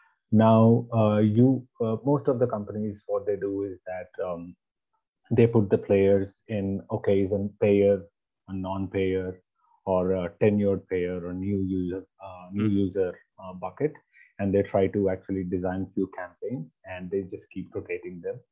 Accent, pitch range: Indian, 95-110 Hz